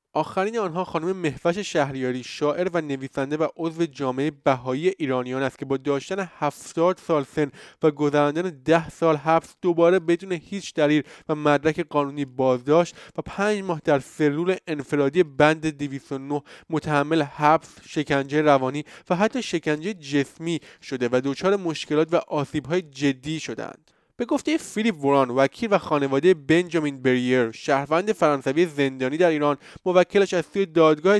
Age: 20-39